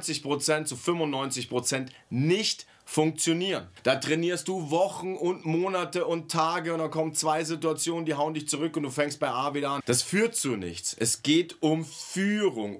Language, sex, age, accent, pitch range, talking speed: German, male, 40-59, German, 145-190 Hz, 170 wpm